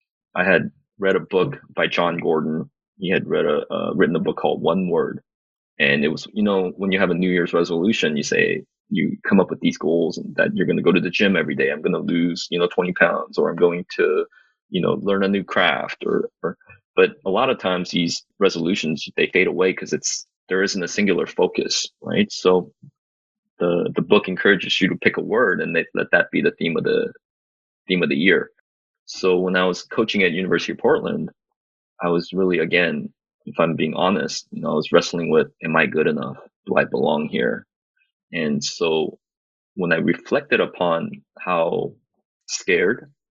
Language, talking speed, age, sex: English, 210 wpm, 20-39, male